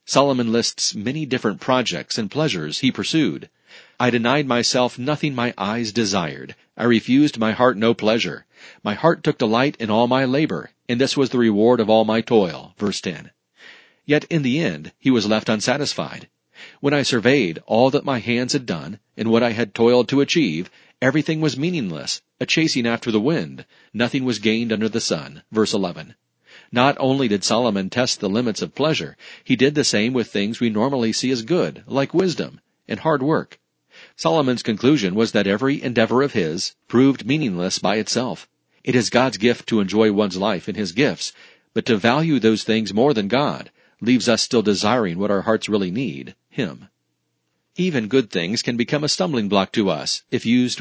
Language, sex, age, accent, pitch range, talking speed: English, male, 40-59, American, 110-135 Hz, 190 wpm